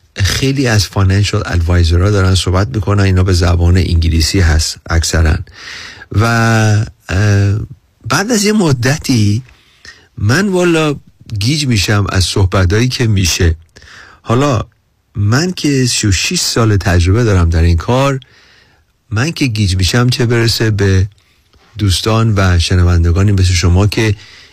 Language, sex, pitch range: Persian, male, 95-120 Hz